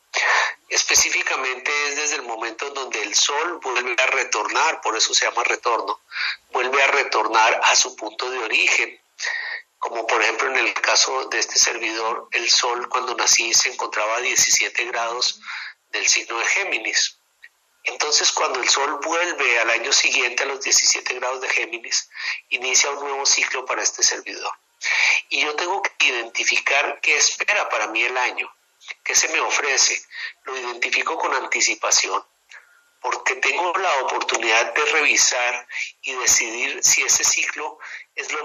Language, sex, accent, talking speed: Spanish, male, Mexican, 155 wpm